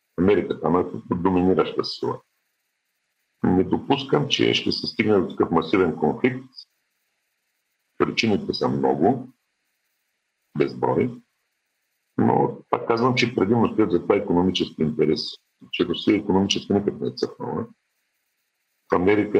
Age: 50-69